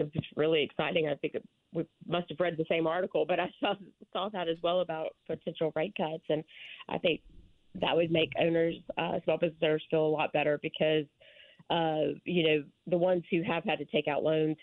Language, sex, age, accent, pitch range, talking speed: English, female, 30-49, American, 145-165 Hz, 210 wpm